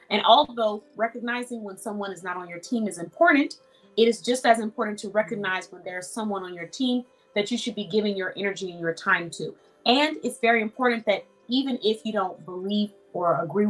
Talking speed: 210 wpm